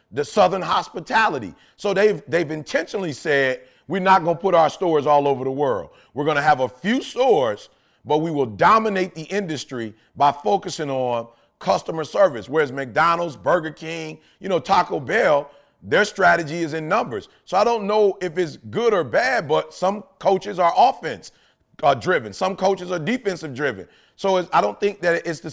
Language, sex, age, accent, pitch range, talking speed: English, male, 30-49, American, 150-195 Hz, 185 wpm